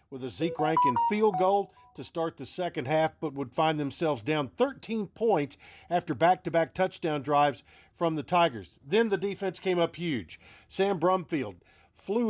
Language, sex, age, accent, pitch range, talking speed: English, male, 50-69, American, 145-190 Hz, 170 wpm